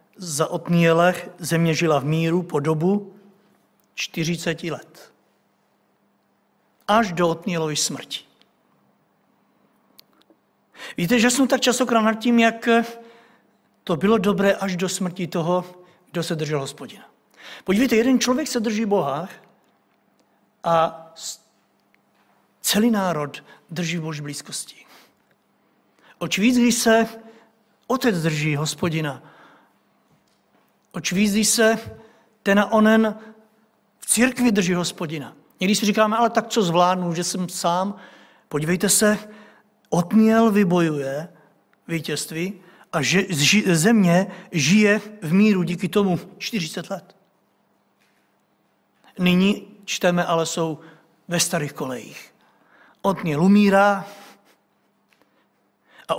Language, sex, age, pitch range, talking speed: Czech, male, 60-79, 165-215 Hz, 100 wpm